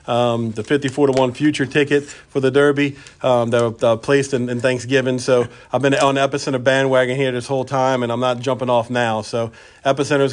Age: 40-59